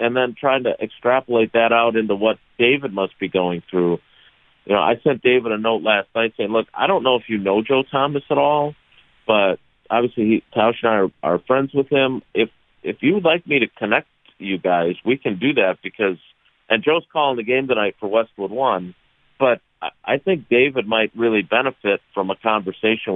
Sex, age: male, 50-69